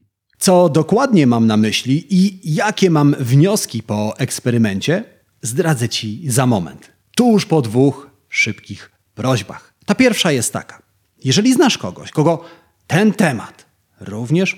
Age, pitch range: 30-49, 115-175 Hz